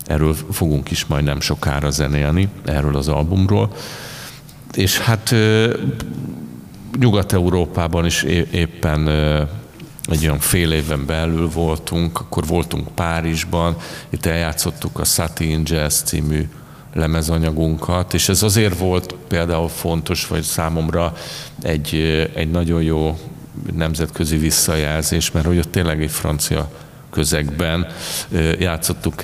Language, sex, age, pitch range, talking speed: Hungarian, male, 50-69, 80-90 Hz, 105 wpm